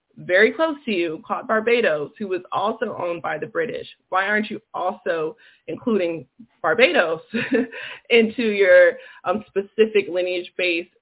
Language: English